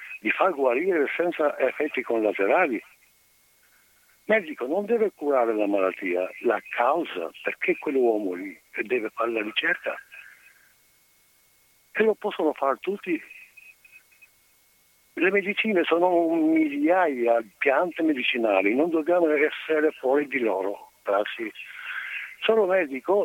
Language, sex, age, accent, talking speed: Italian, male, 60-79, native, 115 wpm